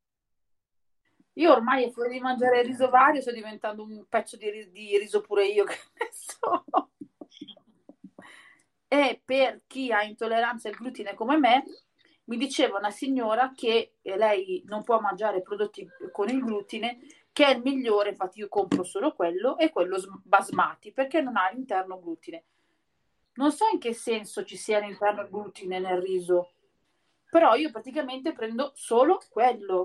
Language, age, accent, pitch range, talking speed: Italian, 40-59, native, 205-270 Hz, 155 wpm